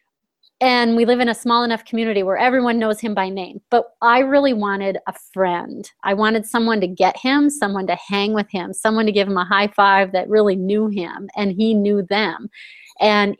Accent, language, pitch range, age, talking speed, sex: American, English, 195-230 Hz, 30-49, 210 wpm, female